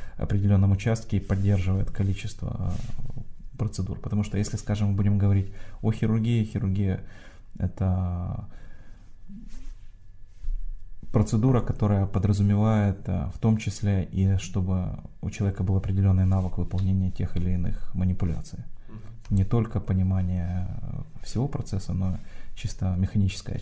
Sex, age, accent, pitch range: male, 20-39, native, 95-105 Hz